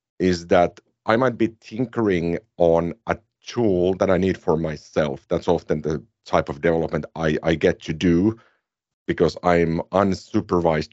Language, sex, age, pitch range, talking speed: English, male, 50-69, 80-100 Hz, 155 wpm